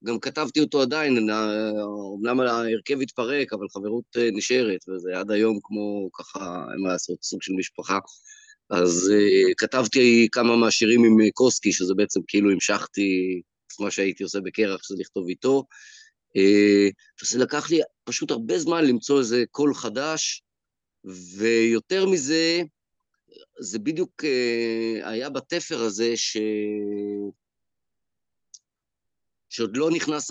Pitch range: 105-140 Hz